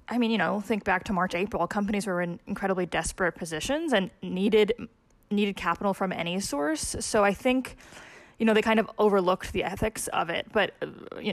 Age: 20-39